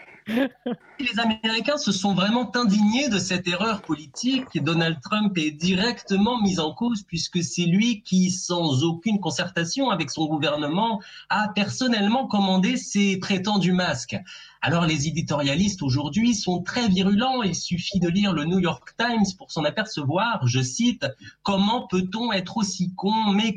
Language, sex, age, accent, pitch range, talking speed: French, male, 30-49, French, 155-210 Hz, 150 wpm